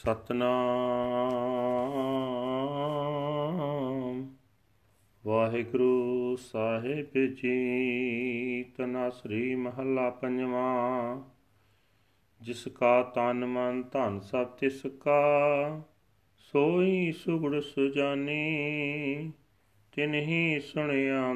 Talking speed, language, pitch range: 55 wpm, Punjabi, 125-145 Hz